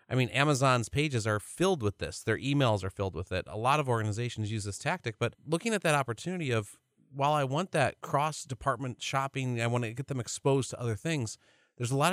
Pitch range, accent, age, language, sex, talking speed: 110-135 Hz, American, 30-49, English, male, 225 wpm